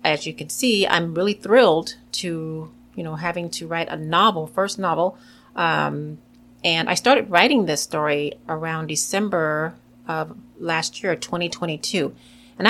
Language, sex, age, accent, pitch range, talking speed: English, female, 30-49, American, 155-210 Hz, 145 wpm